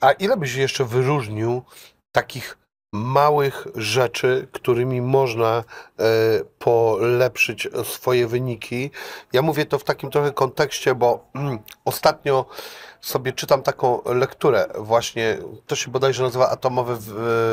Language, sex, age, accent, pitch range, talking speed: Polish, male, 40-59, native, 125-150 Hz, 110 wpm